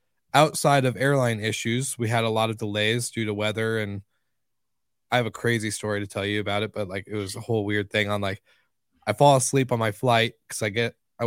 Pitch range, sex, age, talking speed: 110-130 Hz, male, 20-39, 235 wpm